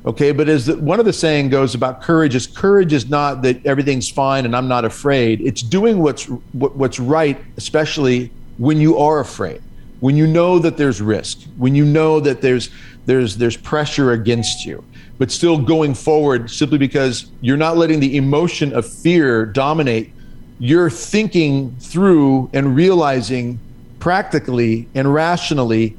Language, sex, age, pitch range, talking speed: English, male, 40-59, 125-160 Hz, 165 wpm